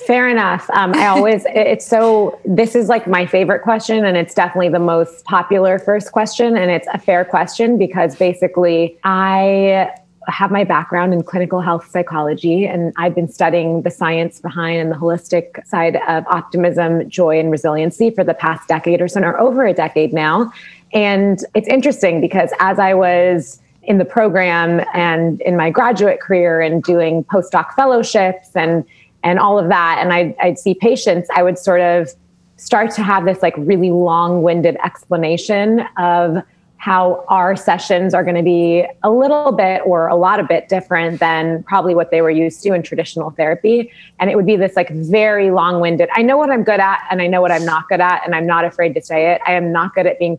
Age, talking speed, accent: 20-39, 195 wpm, American